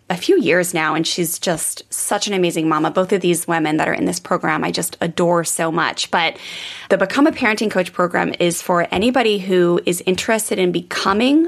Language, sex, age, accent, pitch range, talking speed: English, female, 20-39, American, 175-215 Hz, 210 wpm